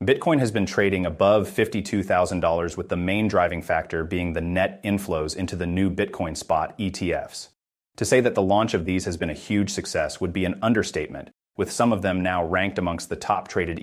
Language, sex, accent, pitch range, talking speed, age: English, male, American, 85-105 Hz, 200 wpm, 30-49